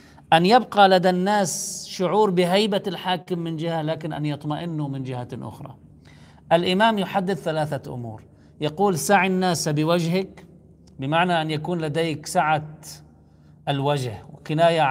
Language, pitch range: Arabic, 130-175 Hz